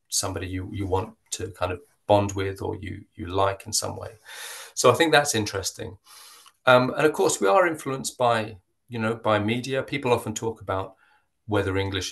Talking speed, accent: 195 wpm, British